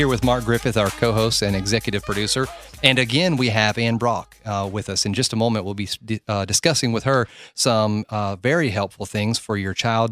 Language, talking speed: English, 215 wpm